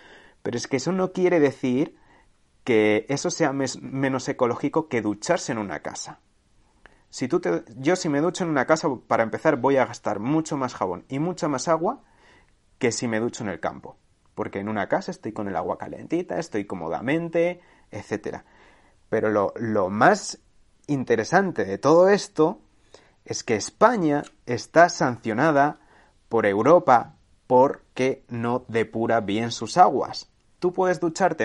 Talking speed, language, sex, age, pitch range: 160 wpm, Spanish, male, 30-49, 115-165 Hz